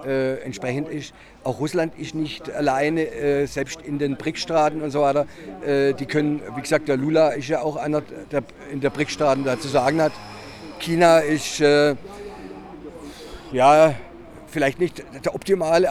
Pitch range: 140-160 Hz